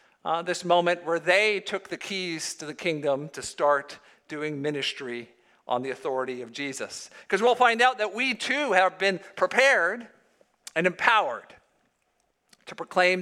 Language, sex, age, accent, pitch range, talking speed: English, male, 50-69, American, 155-210 Hz, 155 wpm